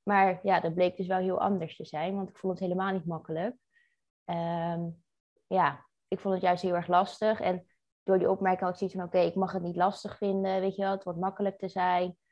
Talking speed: 245 wpm